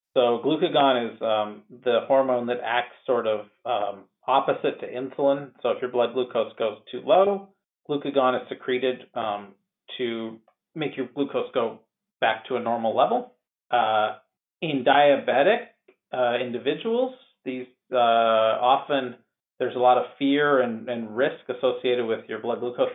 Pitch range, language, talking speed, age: 105-130 Hz, English, 150 wpm, 40-59